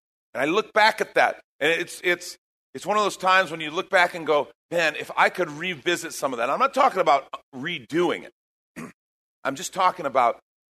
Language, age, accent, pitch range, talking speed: English, 50-69, American, 140-190 Hz, 210 wpm